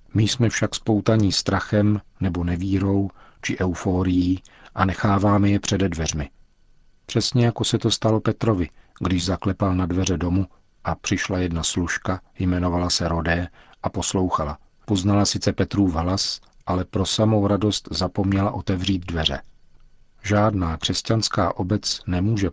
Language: Czech